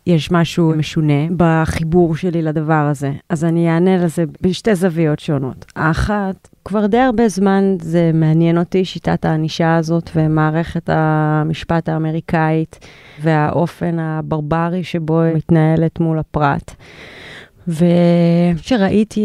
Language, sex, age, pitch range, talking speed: Hebrew, female, 30-49, 165-200 Hz, 110 wpm